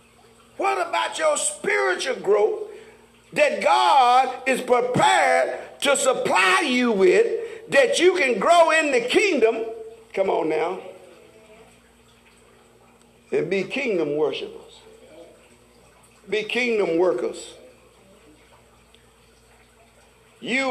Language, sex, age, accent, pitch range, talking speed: English, male, 50-69, American, 225-375 Hz, 90 wpm